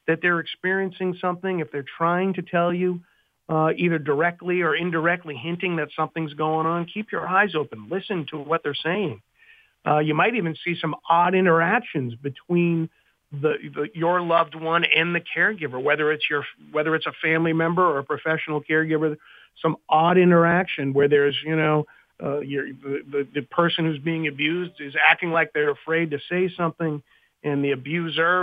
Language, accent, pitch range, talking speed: English, American, 155-180 Hz, 175 wpm